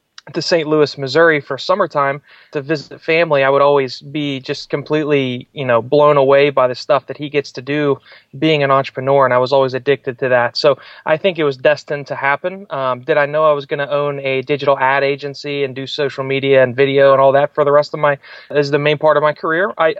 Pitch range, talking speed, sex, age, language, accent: 135-150 Hz, 245 wpm, male, 30-49, English, American